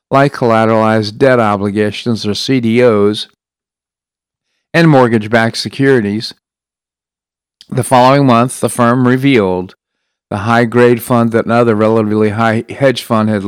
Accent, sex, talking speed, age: American, male, 120 wpm, 50-69